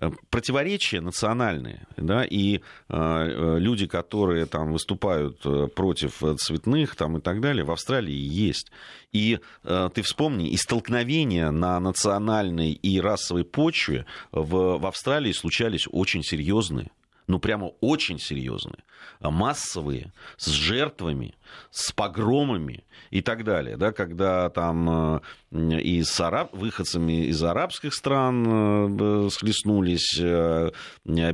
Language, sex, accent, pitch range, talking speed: Russian, male, native, 80-105 Hz, 105 wpm